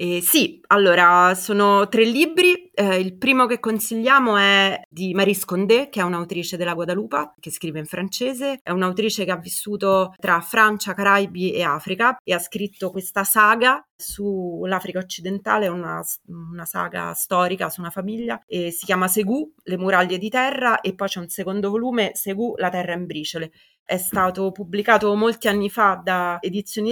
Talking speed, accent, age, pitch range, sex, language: 165 wpm, native, 30-49, 180-215 Hz, female, Italian